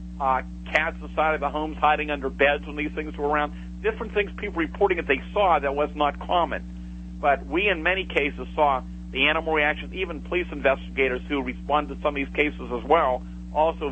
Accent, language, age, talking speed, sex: American, English, 50-69, 205 wpm, male